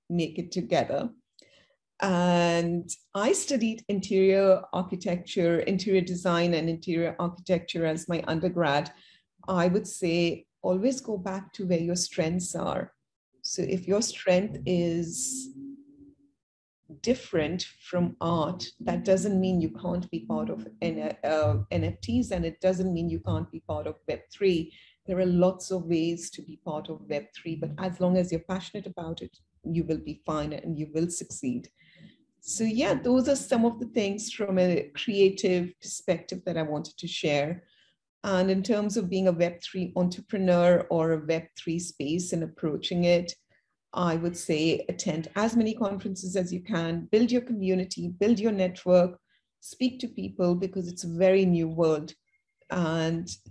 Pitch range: 165-195 Hz